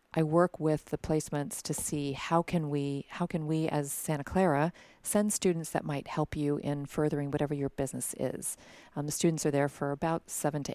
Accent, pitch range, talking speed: American, 145-165 Hz, 205 wpm